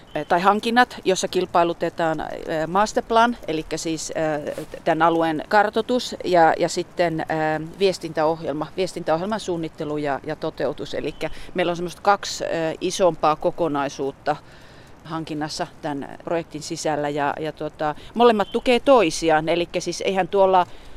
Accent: native